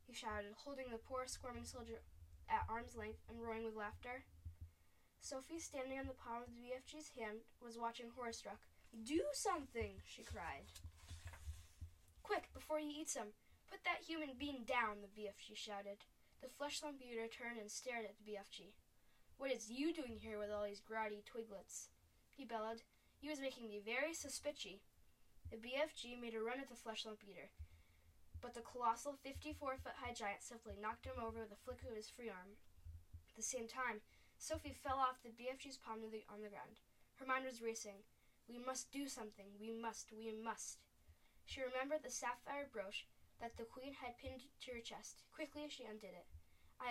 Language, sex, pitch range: English, female, 210-260 Hz